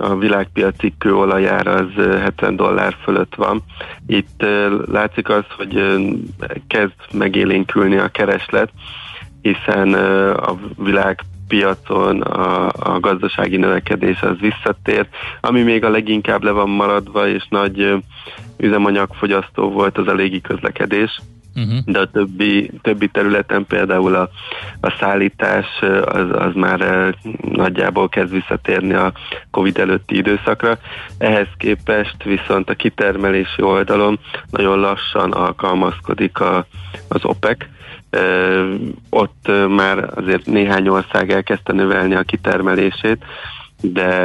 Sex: male